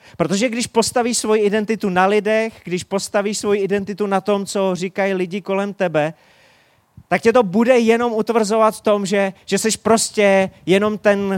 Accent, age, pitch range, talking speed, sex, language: native, 30-49, 175-215 Hz, 170 wpm, male, Czech